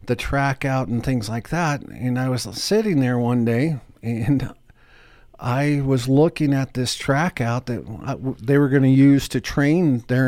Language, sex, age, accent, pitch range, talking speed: English, male, 50-69, American, 120-150 Hz, 180 wpm